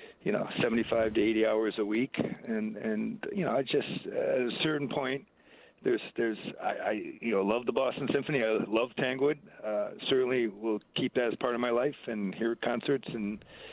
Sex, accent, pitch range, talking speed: male, American, 105-155 Hz, 195 wpm